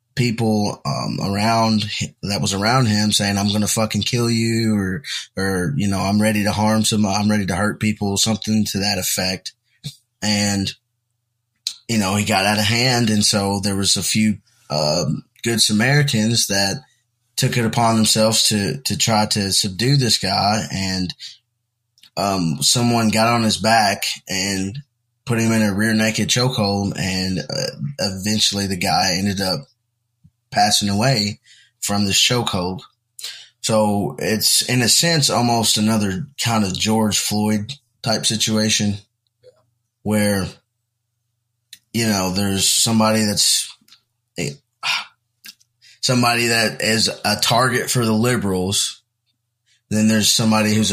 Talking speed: 140 wpm